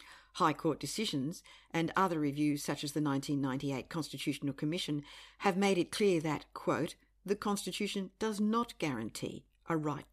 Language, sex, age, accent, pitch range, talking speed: English, female, 50-69, Australian, 140-190 Hz, 150 wpm